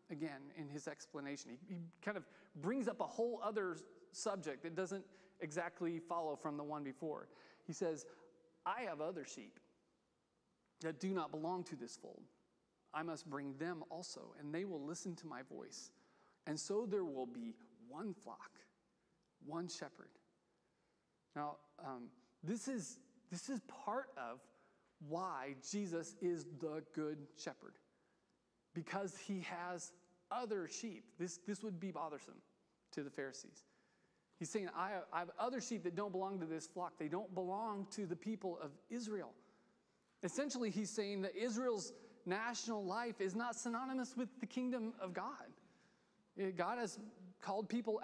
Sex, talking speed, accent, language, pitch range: male, 155 wpm, American, English, 160-215 Hz